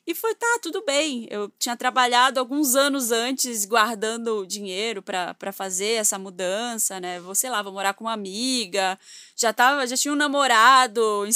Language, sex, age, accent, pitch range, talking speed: Portuguese, female, 20-39, Brazilian, 205-265 Hz, 175 wpm